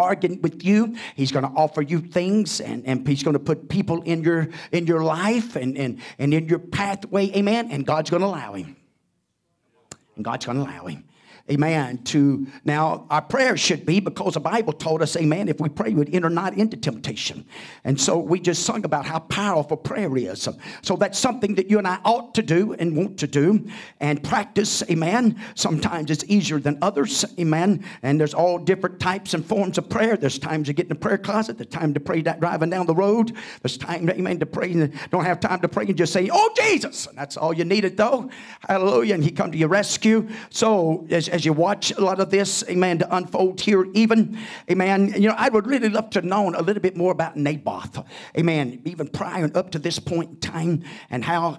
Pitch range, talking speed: 150-195 Hz, 220 wpm